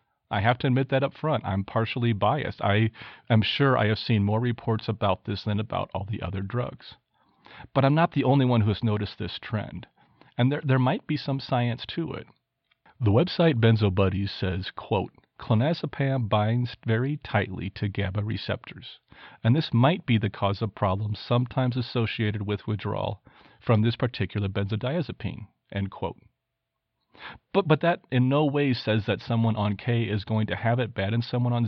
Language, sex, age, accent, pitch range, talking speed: English, male, 40-59, American, 105-135 Hz, 180 wpm